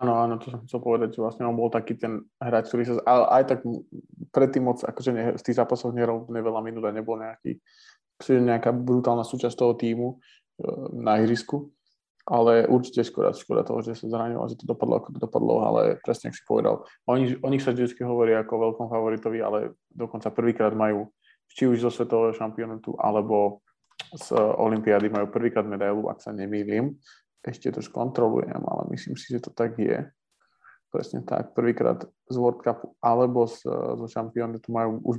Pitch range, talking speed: 115-125 Hz, 180 wpm